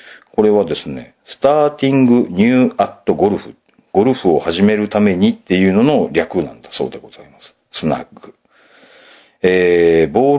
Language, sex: Japanese, male